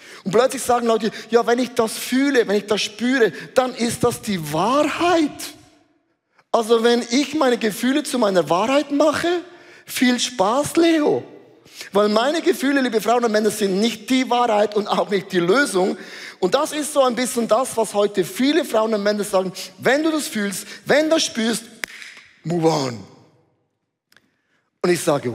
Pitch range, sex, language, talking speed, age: 195-275 Hz, male, German, 175 wpm, 30-49